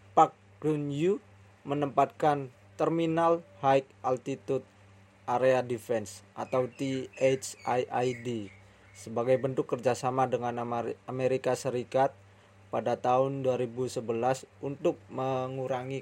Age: 20-39